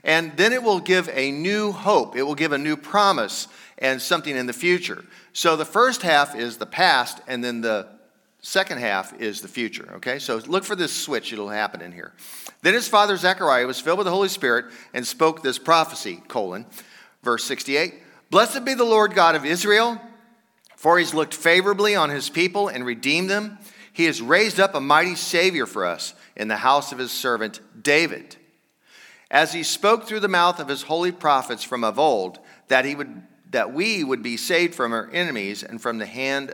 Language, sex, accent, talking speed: English, male, American, 200 wpm